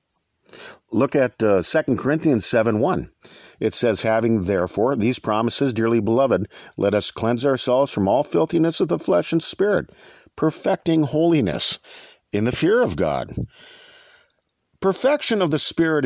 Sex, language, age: male, English, 50-69